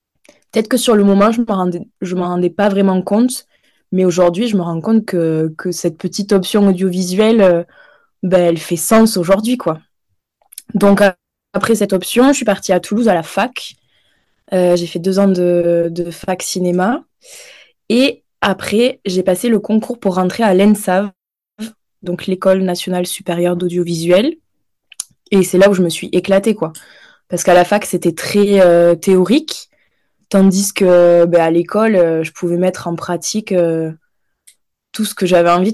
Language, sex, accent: French, female, French